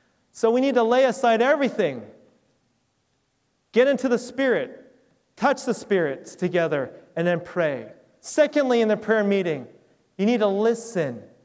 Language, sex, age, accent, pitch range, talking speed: English, male, 30-49, American, 180-235 Hz, 140 wpm